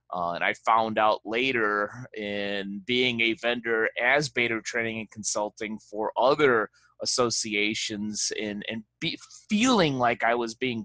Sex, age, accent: male, 30-49, American